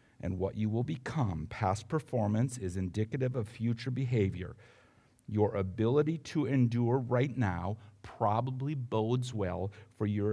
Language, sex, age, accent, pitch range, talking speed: English, male, 50-69, American, 105-130 Hz, 135 wpm